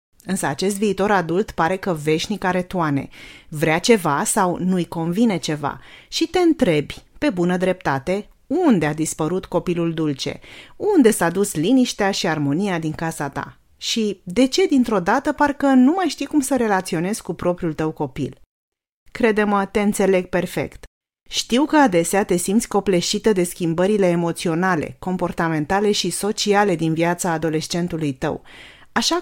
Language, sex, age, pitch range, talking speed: Romanian, female, 30-49, 165-220 Hz, 150 wpm